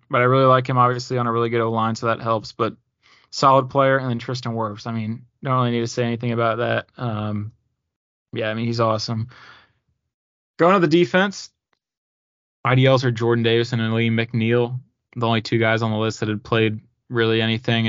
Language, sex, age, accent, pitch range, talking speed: English, male, 20-39, American, 110-125 Hz, 205 wpm